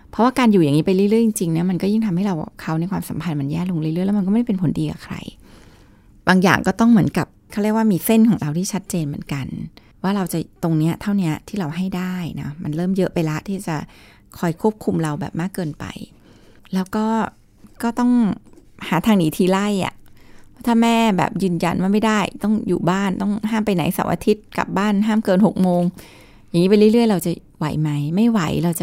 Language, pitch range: Thai, 165-210 Hz